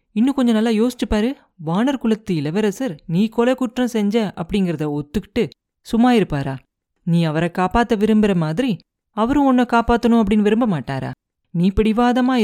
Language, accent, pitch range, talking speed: Tamil, native, 165-230 Hz, 130 wpm